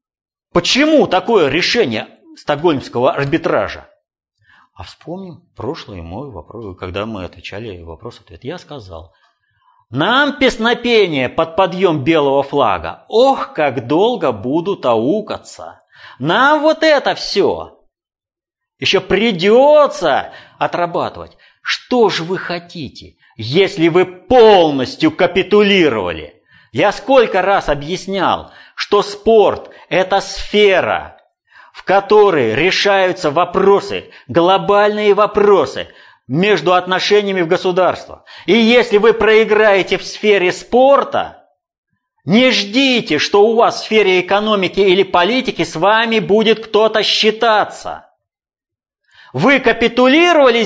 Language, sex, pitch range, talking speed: Russian, male, 150-225 Hz, 100 wpm